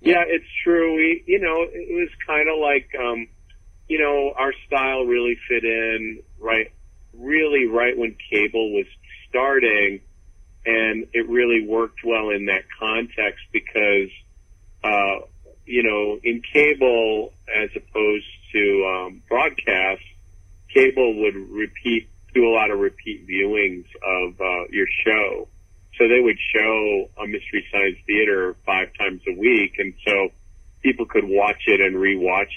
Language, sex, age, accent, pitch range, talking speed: English, male, 40-59, American, 95-125 Hz, 145 wpm